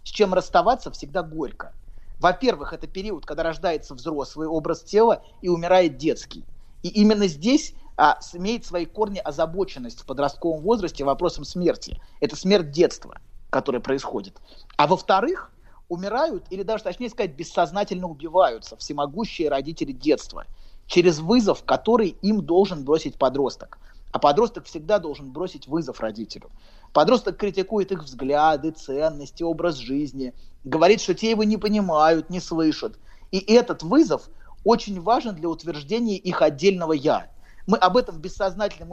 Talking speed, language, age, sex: 135 wpm, Russian, 30-49, male